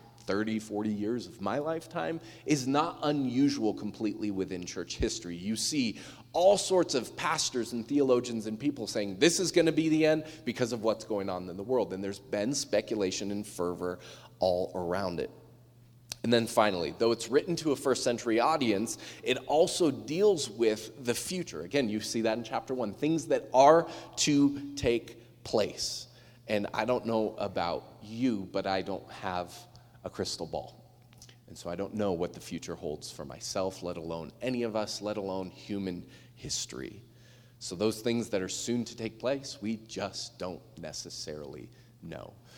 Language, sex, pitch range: English, male, 100-125 Hz